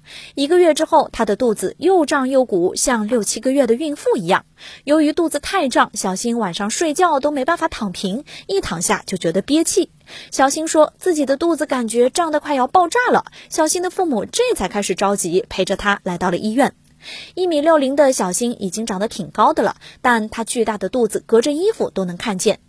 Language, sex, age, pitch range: Chinese, female, 20-39, 200-315 Hz